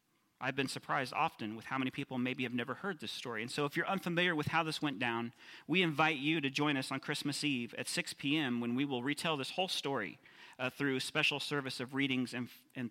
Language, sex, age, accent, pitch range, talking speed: English, male, 40-59, American, 130-170 Hz, 240 wpm